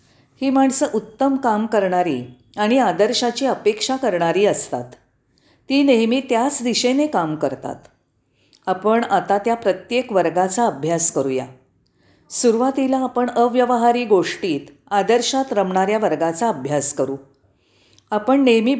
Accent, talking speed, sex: native, 110 wpm, female